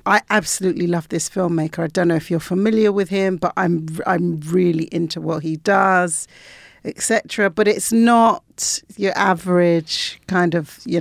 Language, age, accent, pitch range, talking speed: English, 50-69, British, 155-190 Hz, 165 wpm